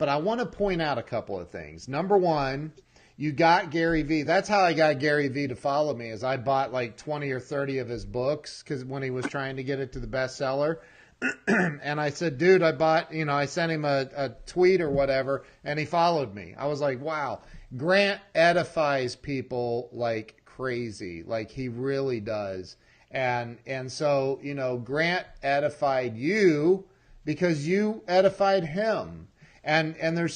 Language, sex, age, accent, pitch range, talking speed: English, male, 40-59, American, 125-165 Hz, 190 wpm